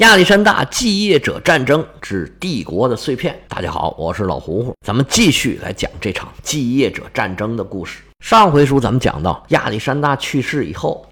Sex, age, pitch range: male, 50-69, 105-160 Hz